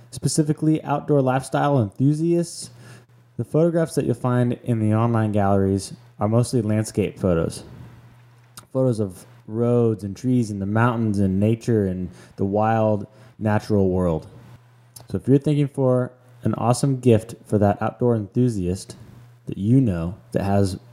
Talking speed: 140 wpm